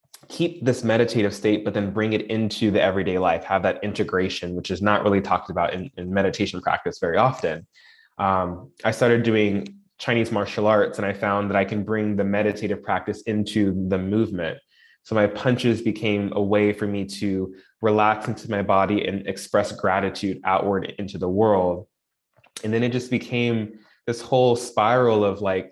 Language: English